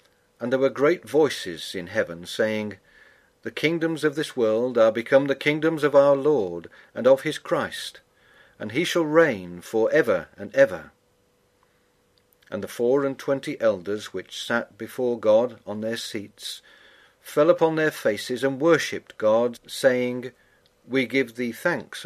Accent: British